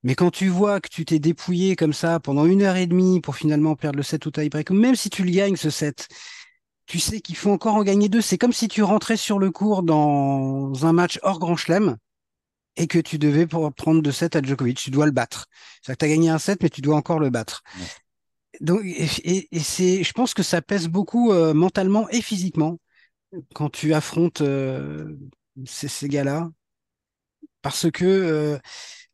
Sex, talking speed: male, 215 wpm